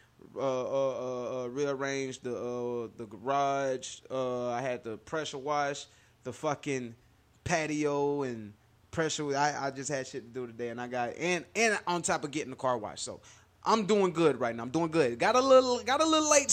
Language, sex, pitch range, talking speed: English, male, 130-200 Hz, 205 wpm